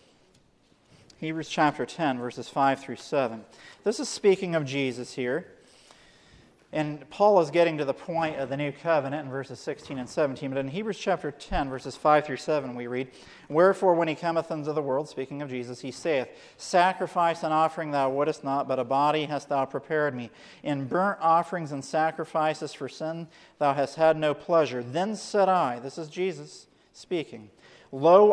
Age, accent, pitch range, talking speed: 40-59, American, 140-175 Hz, 180 wpm